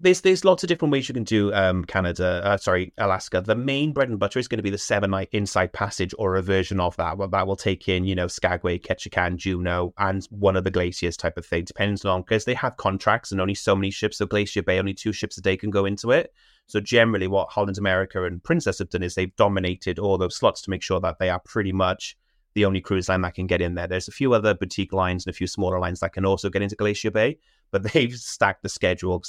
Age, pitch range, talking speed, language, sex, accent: 30-49, 90-105 Hz, 270 wpm, English, male, British